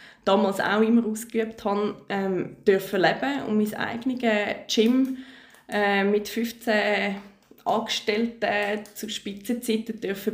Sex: female